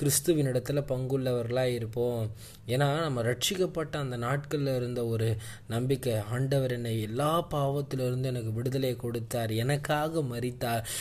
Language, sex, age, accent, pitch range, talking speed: Tamil, male, 20-39, native, 120-160 Hz, 115 wpm